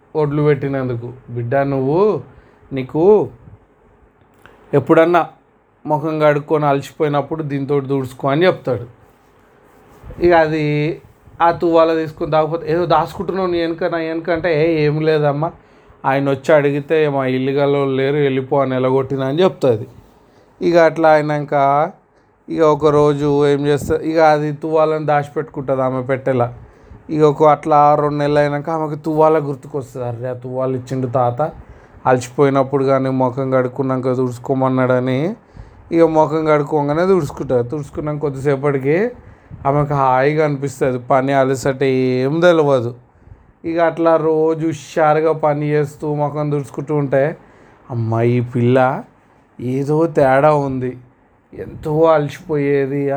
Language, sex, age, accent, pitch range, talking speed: Telugu, male, 30-49, native, 130-155 Hz, 105 wpm